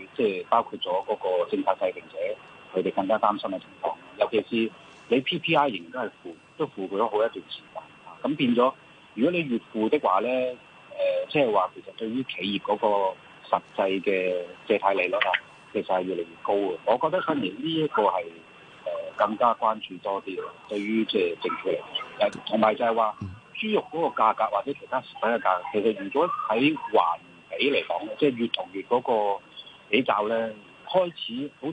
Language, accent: Chinese, native